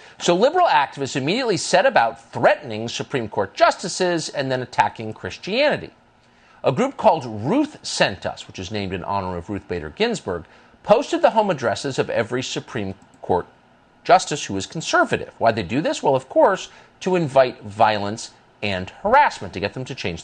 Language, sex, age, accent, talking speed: English, male, 50-69, American, 170 wpm